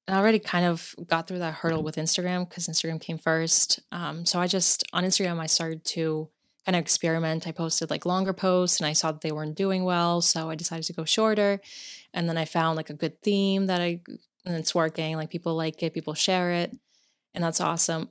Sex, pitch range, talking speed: female, 160-180 Hz, 225 wpm